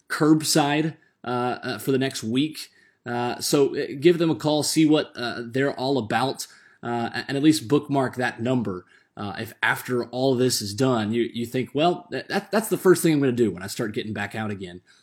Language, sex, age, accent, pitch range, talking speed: English, male, 20-39, American, 115-140 Hz, 210 wpm